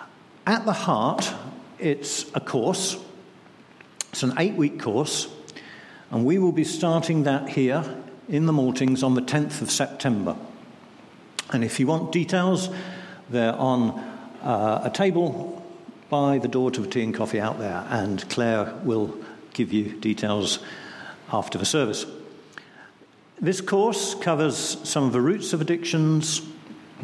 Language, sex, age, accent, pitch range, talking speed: English, male, 50-69, British, 120-170 Hz, 140 wpm